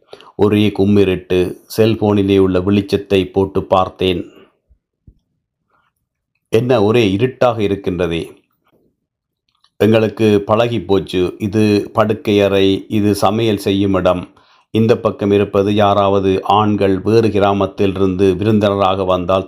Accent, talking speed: native, 90 wpm